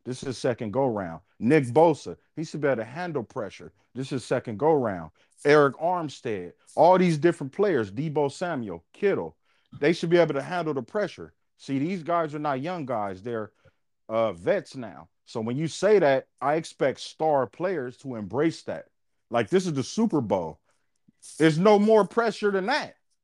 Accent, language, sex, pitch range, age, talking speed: American, English, male, 120-170 Hz, 40-59, 185 wpm